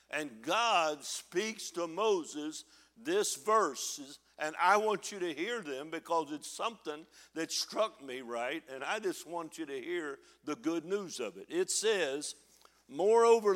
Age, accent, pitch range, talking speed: 60-79, American, 155-225 Hz, 160 wpm